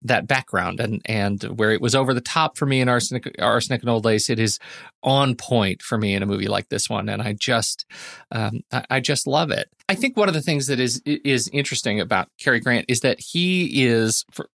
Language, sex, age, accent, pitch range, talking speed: English, male, 40-59, American, 115-145 Hz, 225 wpm